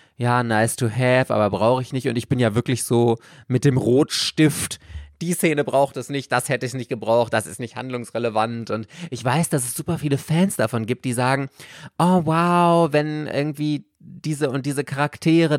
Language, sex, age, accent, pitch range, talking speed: German, male, 20-39, German, 120-150 Hz, 195 wpm